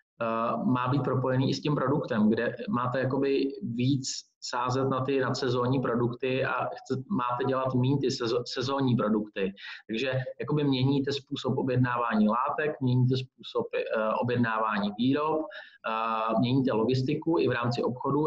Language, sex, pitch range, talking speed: Czech, male, 125-145 Hz, 140 wpm